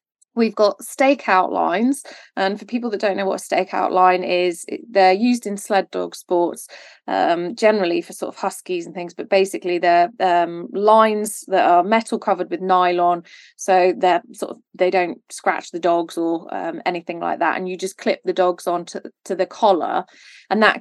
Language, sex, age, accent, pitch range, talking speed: English, female, 20-39, British, 175-200 Hz, 190 wpm